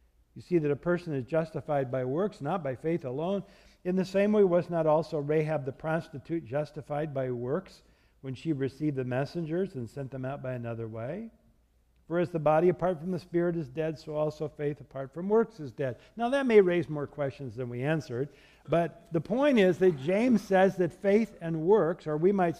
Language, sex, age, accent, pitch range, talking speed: English, male, 60-79, American, 145-190 Hz, 210 wpm